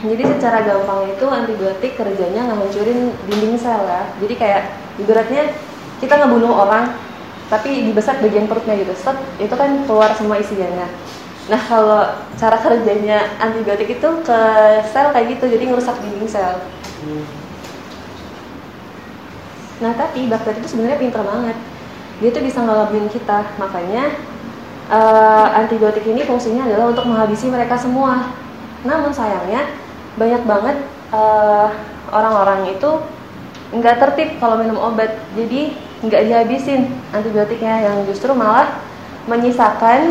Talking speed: 125 wpm